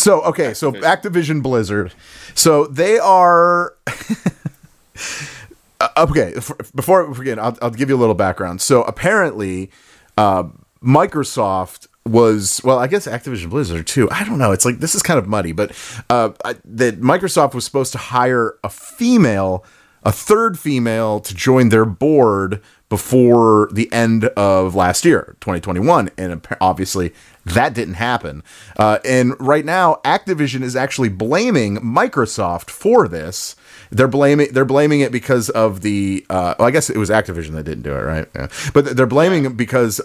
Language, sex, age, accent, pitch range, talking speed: English, male, 30-49, American, 100-145 Hz, 160 wpm